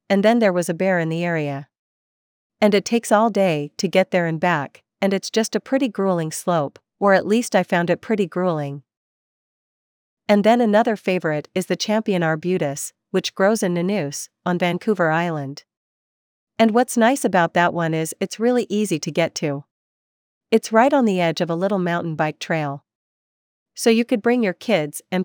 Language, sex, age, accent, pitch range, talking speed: English, female, 40-59, American, 160-210 Hz, 190 wpm